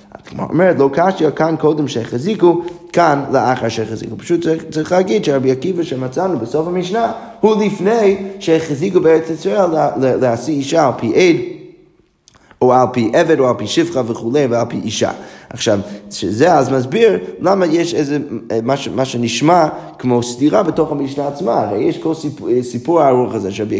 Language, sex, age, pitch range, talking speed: Hebrew, male, 20-39, 120-165 Hz, 160 wpm